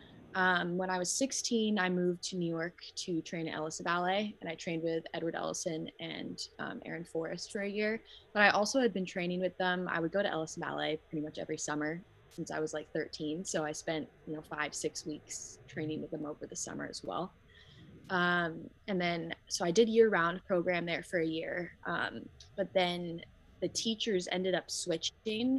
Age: 20-39